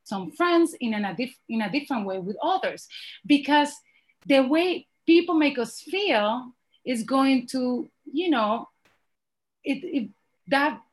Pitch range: 210-275 Hz